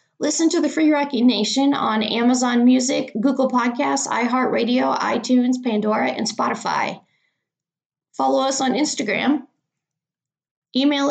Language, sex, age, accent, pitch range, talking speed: English, female, 20-39, American, 200-260 Hz, 115 wpm